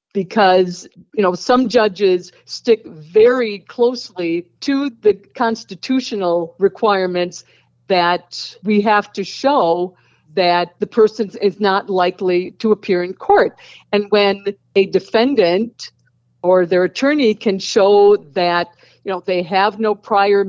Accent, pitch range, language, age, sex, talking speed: American, 180-220 Hz, English, 50-69, female, 125 wpm